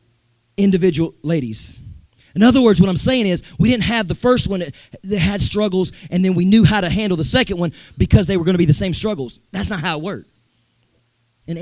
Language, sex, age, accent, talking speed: English, male, 30-49, American, 220 wpm